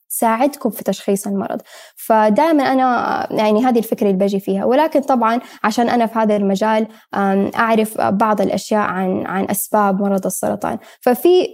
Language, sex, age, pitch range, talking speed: Arabic, female, 10-29, 195-240 Hz, 140 wpm